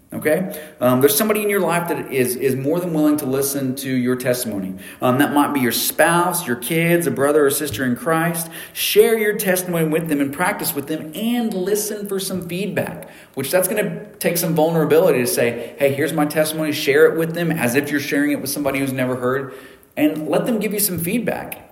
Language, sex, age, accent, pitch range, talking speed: English, male, 40-59, American, 125-170 Hz, 220 wpm